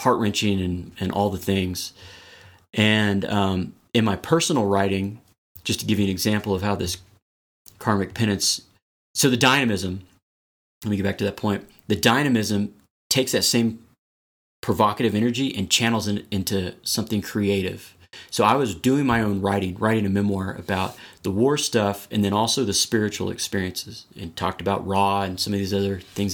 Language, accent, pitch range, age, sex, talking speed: English, American, 95-110 Hz, 30-49, male, 175 wpm